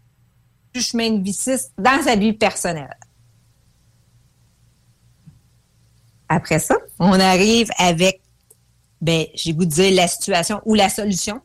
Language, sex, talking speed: English, female, 115 wpm